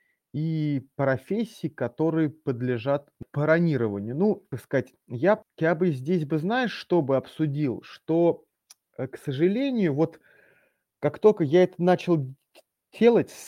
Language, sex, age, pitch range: Russian, male, 30-49, 135-175 Hz